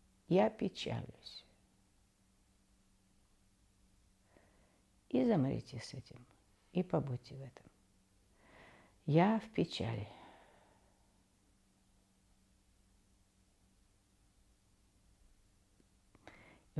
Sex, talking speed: female, 50 wpm